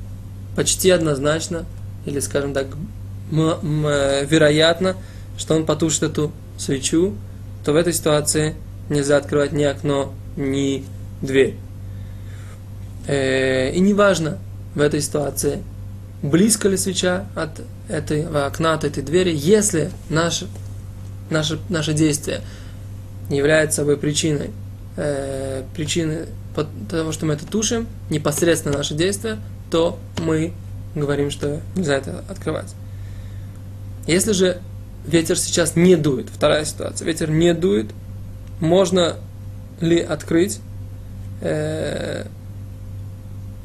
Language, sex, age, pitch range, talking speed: Russian, male, 20-39, 100-160 Hz, 100 wpm